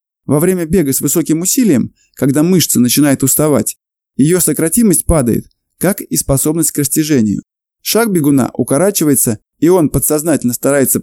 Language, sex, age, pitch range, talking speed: Russian, male, 20-39, 135-175 Hz, 135 wpm